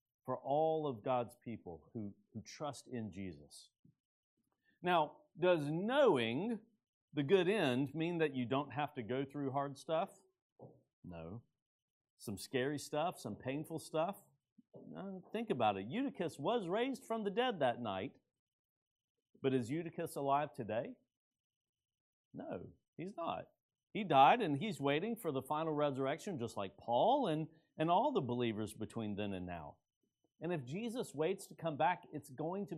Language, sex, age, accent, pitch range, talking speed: English, male, 50-69, American, 125-180 Hz, 150 wpm